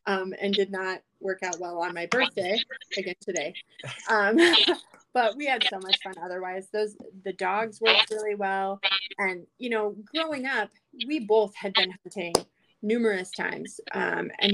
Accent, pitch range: American, 190-225 Hz